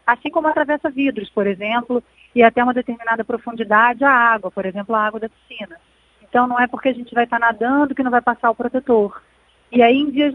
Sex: female